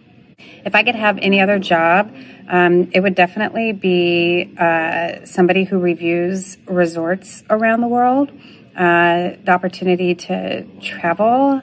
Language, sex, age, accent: English, female, 30-49, American